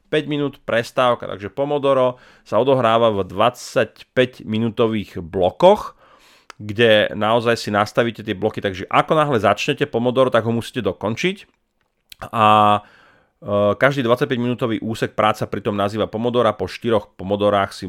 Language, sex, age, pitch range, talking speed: Slovak, male, 30-49, 100-125 Hz, 130 wpm